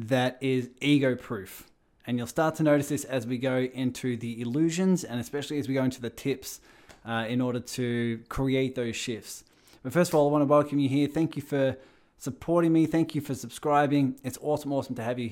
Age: 20-39